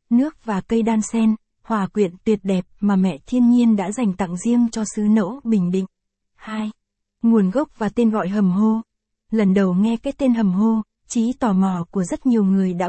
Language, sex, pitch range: Vietnamese, female, 195-235 Hz